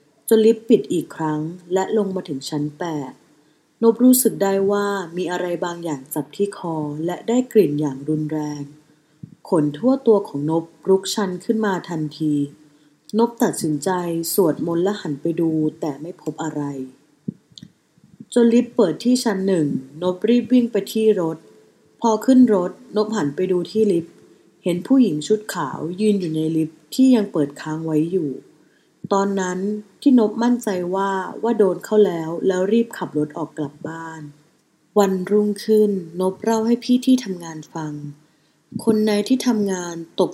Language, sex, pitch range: Thai, female, 155-210 Hz